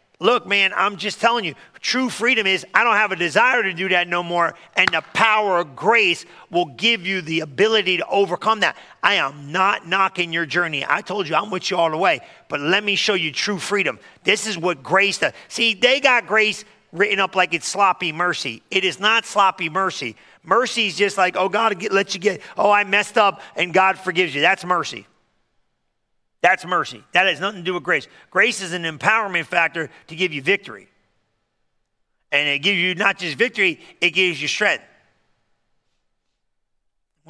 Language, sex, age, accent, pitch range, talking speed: English, male, 40-59, American, 170-210 Hz, 195 wpm